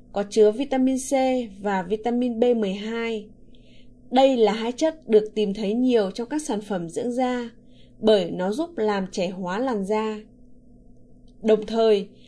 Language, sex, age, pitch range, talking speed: Vietnamese, female, 20-39, 200-260 Hz, 150 wpm